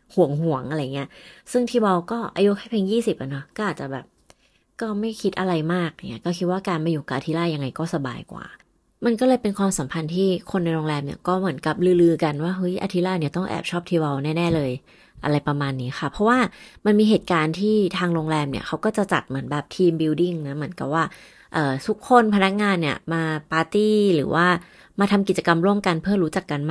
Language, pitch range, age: Thai, 155-200 Hz, 20-39